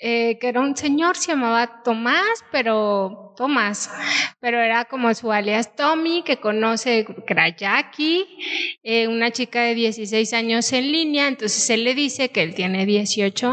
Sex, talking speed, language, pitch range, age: female, 155 wpm, Spanish, 220-270 Hz, 30-49